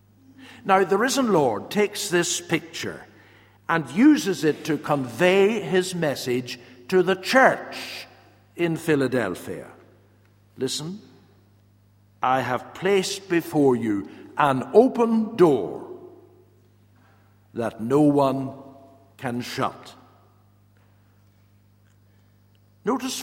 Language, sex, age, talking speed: English, male, 60-79, 90 wpm